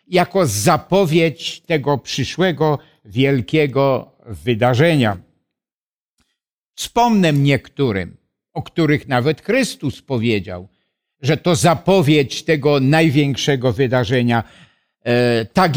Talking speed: 75 wpm